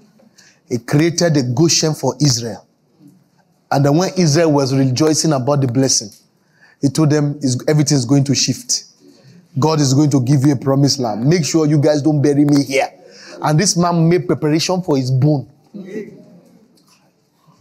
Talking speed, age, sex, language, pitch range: 165 wpm, 30-49, male, English, 150-215 Hz